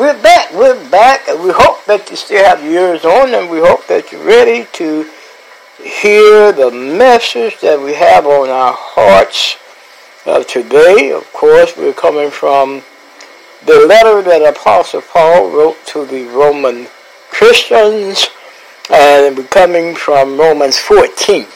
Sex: male